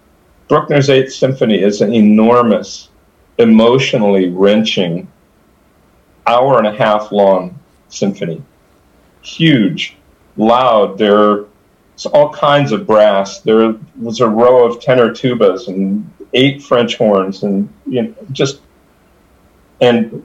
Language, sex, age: English, male, 50-69